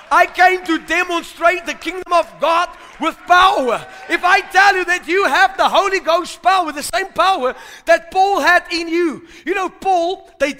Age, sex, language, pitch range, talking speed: 40-59, male, English, 290-350 Hz, 185 wpm